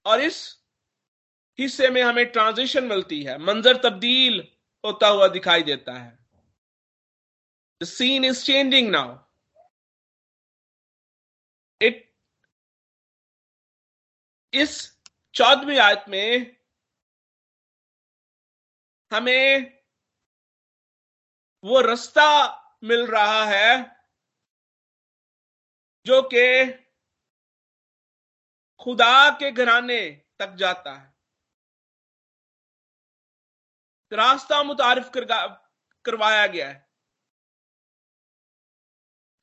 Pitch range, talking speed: 210-270 Hz, 65 wpm